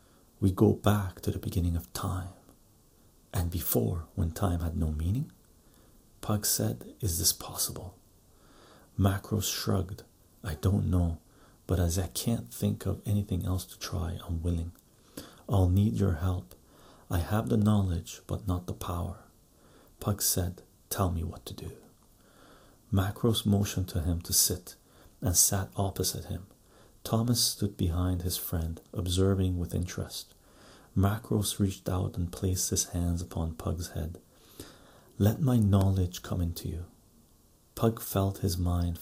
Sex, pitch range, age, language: male, 85-100 Hz, 40-59, English